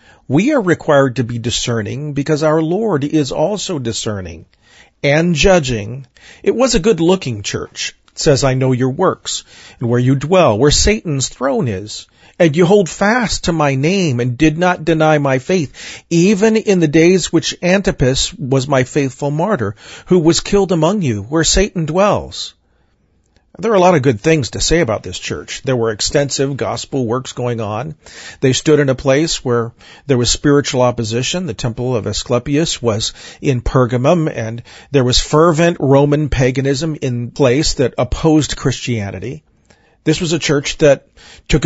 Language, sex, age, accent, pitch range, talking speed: English, male, 40-59, American, 125-170 Hz, 165 wpm